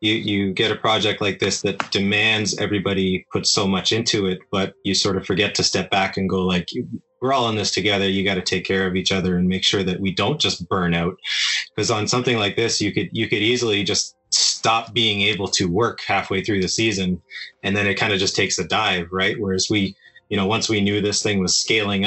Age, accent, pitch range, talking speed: 20-39, American, 95-105 Hz, 240 wpm